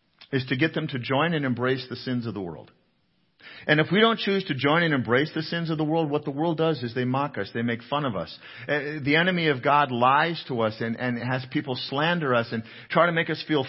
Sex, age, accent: male, 50-69, American